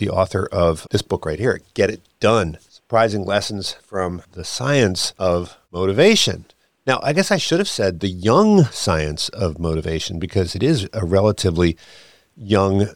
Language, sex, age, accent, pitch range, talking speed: English, male, 50-69, American, 90-115 Hz, 160 wpm